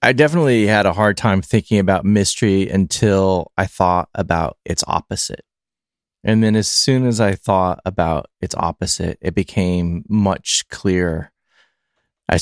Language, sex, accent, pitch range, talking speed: English, male, American, 90-105 Hz, 145 wpm